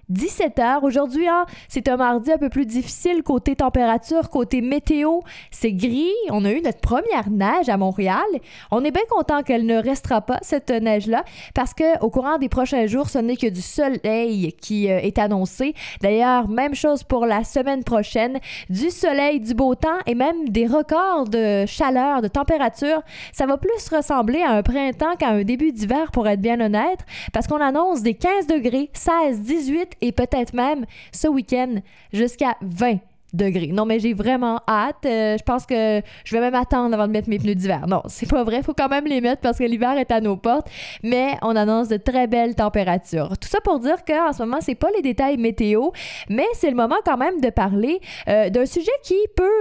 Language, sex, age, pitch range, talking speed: French, female, 20-39, 225-295 Hz, 200 wpm